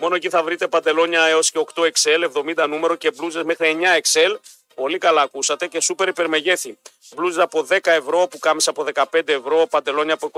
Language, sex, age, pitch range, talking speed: Greek, male, 40-59, 170-235 Hz, 190 wpm